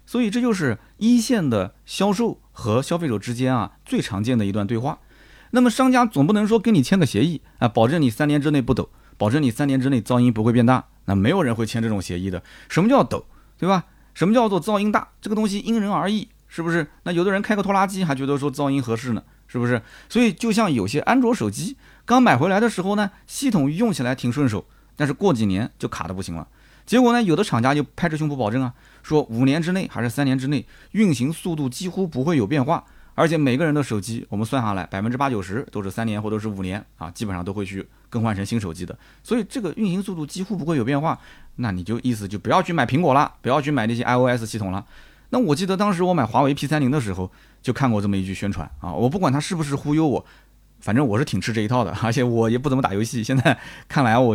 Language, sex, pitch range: Chinese, male, 115-185 Hz